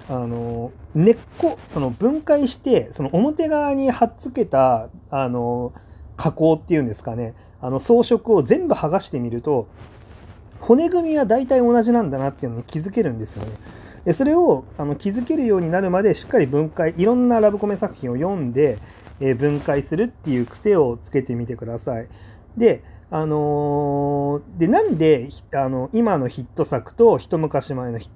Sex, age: male, 40-59